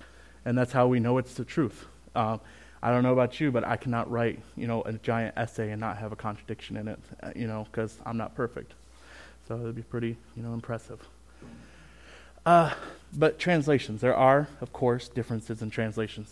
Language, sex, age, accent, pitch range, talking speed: English, male, 20-39, American, 110-125 Hz, 200 wpm